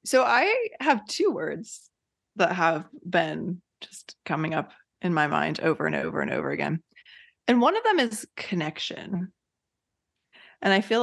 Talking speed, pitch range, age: 160 wpm, 165-235 Hz, 20-39